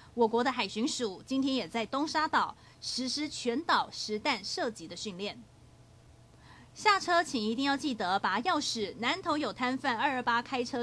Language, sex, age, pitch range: Chinese, female, 30-49, 225-290 Hz